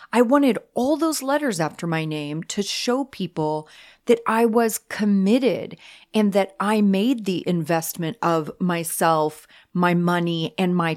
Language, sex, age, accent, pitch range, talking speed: English, female, 30-49, American, 170-235 Hz, 150 wpm